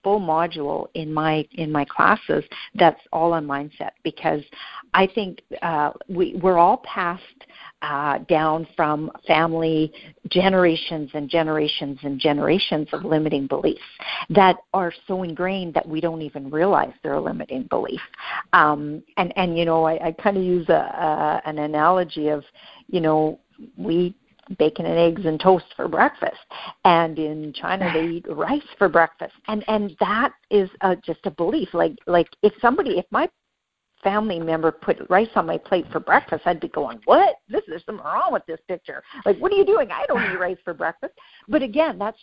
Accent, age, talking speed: American, 50-69, 175 wpm